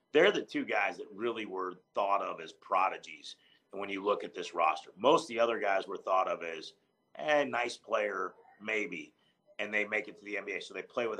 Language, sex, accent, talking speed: English, male, American, 220 wpm